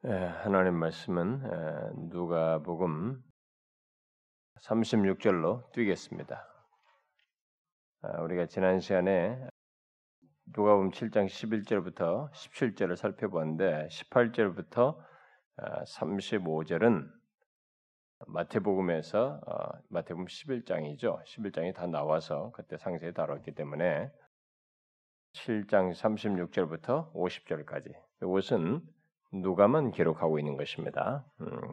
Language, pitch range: Korean, 80-100 Hz